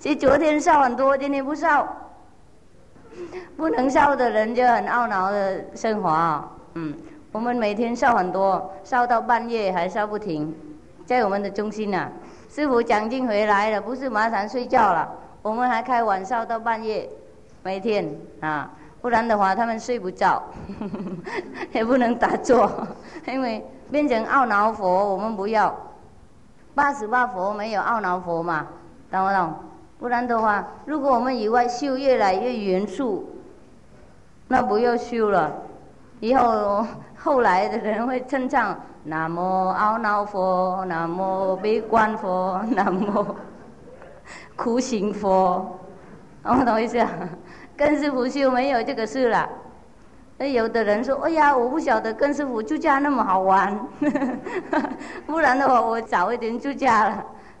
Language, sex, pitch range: English, female, 195-260 Hz